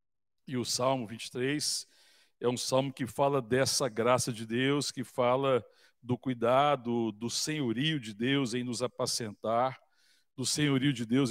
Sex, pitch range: male, 120-145 Hz